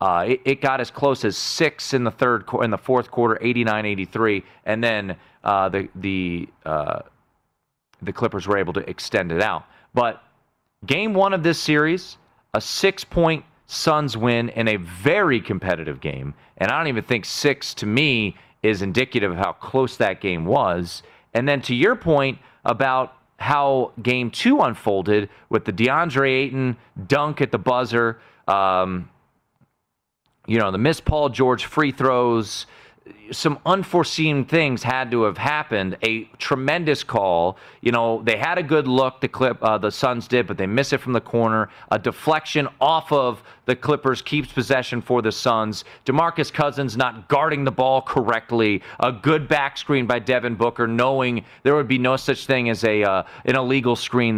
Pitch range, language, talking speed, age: 110-145 Hz, English, 175 wpm, 30-49